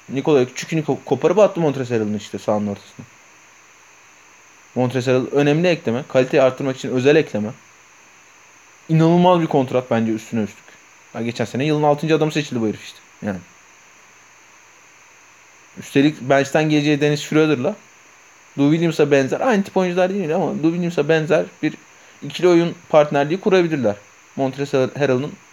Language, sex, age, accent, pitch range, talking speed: Turkish, male, 30-49, native, 125-170 Hz, 130 wpm